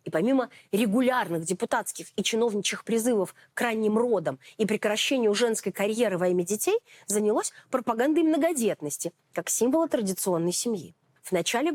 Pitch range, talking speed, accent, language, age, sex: 190-265 Hz, 135 wpm, native, Russian, 30-49, female